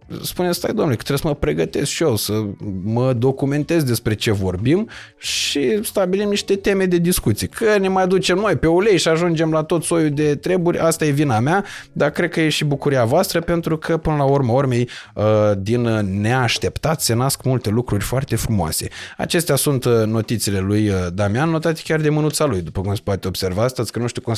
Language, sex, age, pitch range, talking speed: Romanian, male, 20-39, 105-155 Hz, 200 wpm